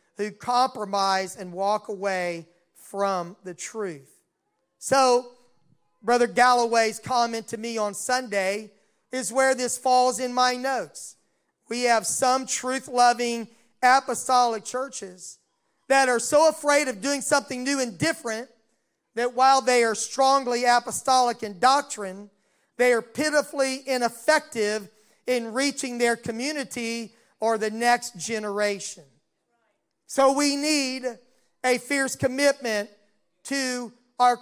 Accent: American